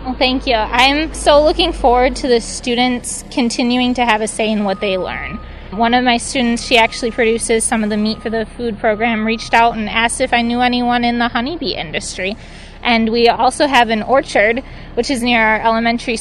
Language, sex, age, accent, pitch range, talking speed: English, female, 20-39, American, 220-255 Hz, 210 wpm